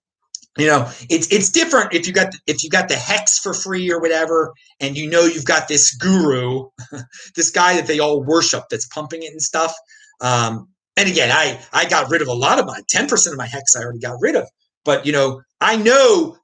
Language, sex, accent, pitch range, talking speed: English, male, American, 145-210 Hz, 225 wpm